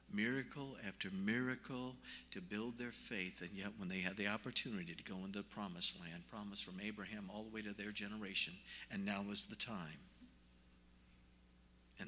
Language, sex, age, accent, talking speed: English, male, 50-69, American, 175 wpm